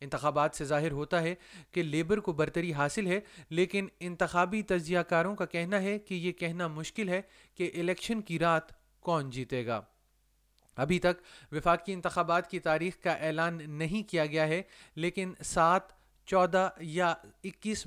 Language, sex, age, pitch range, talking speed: Urdu, male, 30-49, 165-190 Hz, 155 wpm